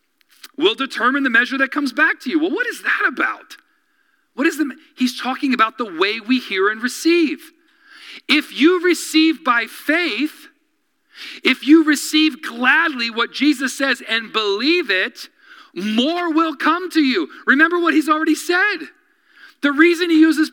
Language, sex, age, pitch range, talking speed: English, male, 40-59, 275-330 Hz, 160 wpm